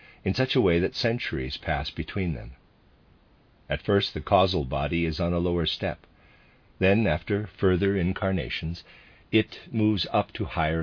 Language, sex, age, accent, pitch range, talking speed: English, male, 50-69, American, 80-105 Hz, 155 wpm